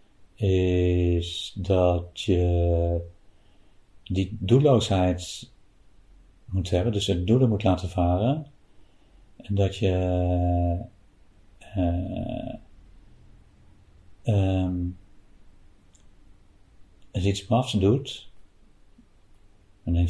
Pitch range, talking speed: 90-100 Hz, 75 wpm